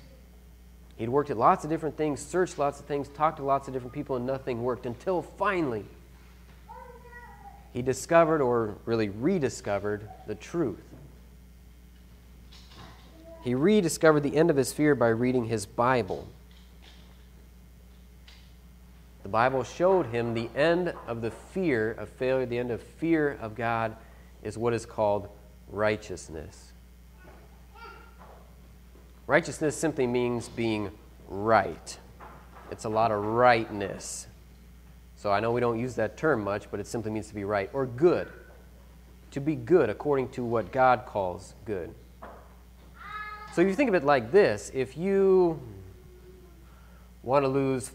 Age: 30-49